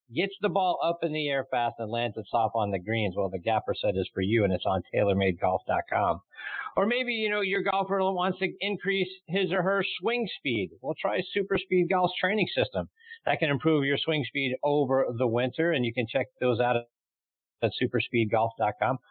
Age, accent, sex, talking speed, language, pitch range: 50-69, American, male, 200 wpm, English, 120-180 Hz